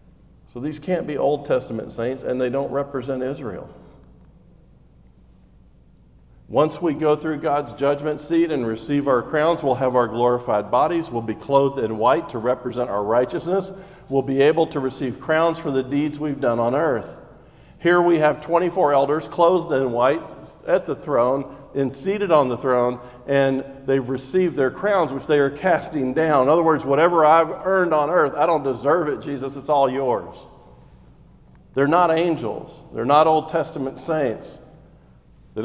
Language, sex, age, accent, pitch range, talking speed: English, male, 50-69, American, 130-160 Hz, 170 wpm